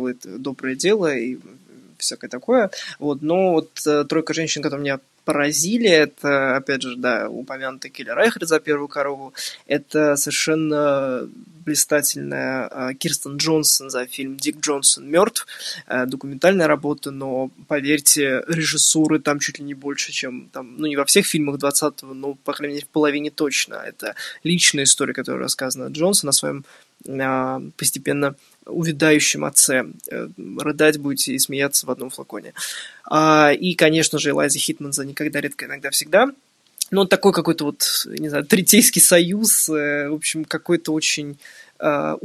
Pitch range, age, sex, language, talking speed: 140-160 Hz, 20-39, male, Ukrainian, 145 wpm